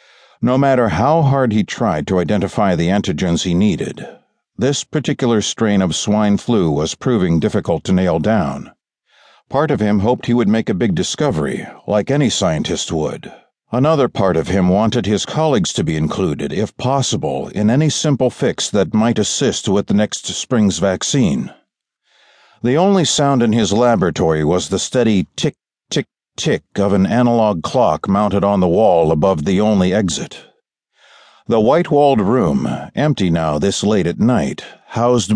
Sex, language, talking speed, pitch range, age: male, English, 165 wpm, 100-130 Hz, 60-79